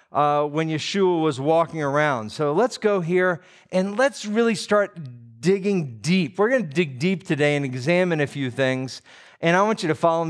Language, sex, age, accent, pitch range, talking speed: English, male, 40-59, American, 145-190 Hz, 190 wpm